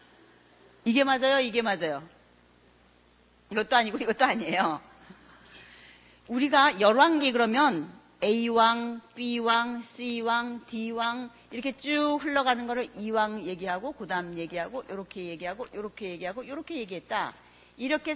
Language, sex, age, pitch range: Korean, female, 40-59, 180-290 Hz